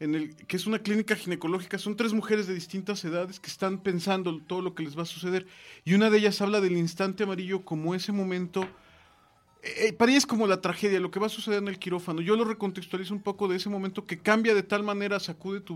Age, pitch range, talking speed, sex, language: 30-49, 165-195 Hz, 245 wpm, male, Spanish